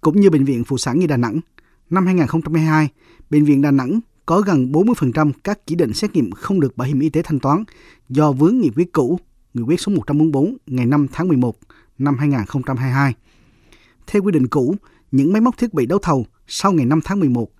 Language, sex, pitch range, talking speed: Vietnamese, male, 135-175 Hz, 210 wpm